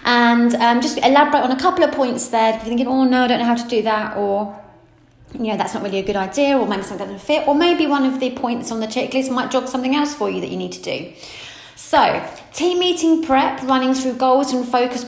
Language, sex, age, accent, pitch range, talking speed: English, female, 30-49, British, 215-270 Hz, 265 wpm